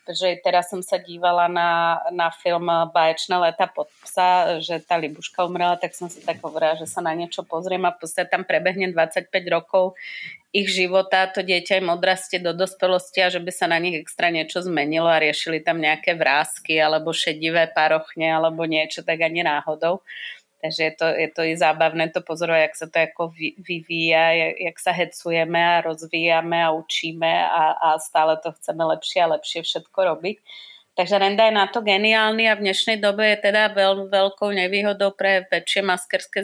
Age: 30-49